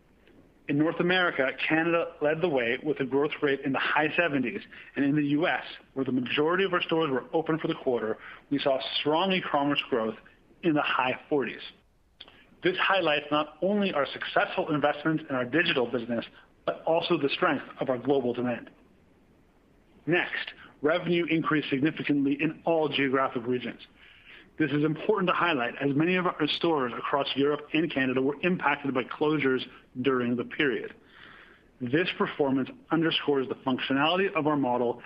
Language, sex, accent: English, male, American